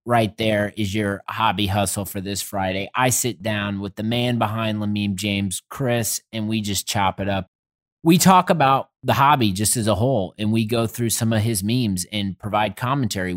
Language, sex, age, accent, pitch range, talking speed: English, male, 30-49, American, 100-120 Hz, 200 wpm